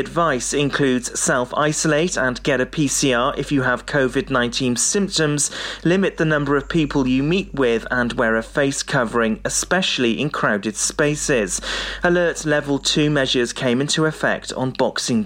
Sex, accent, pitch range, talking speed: male, British, 125-155 Hz, 150 wpm